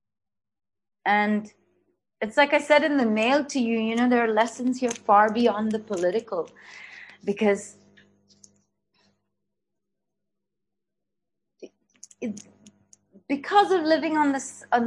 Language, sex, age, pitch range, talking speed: English, female, 30-49, 200-265 Hz, 100 wpm